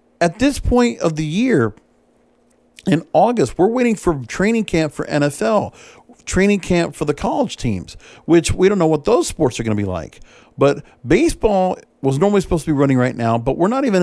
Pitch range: 140-210 Hz